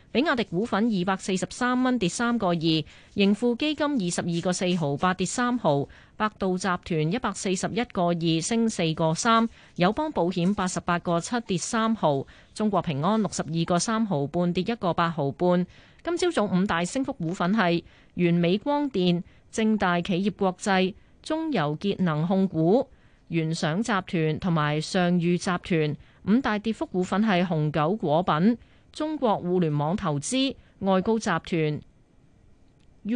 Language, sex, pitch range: Chinese, female, 165-225 Hz